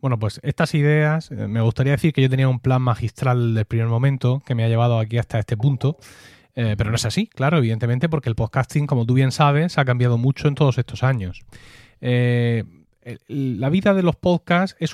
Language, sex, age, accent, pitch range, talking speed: Spanish, male, 30-49, Spanish, 115-145 Hz, 210 wpm